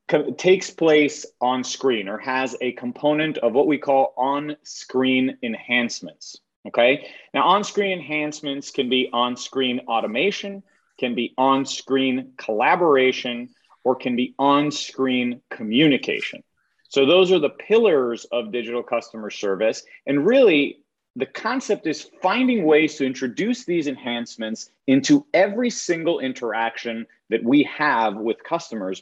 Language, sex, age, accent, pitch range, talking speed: English, male, 30-49, American, 120-165 Hz, 120 wpm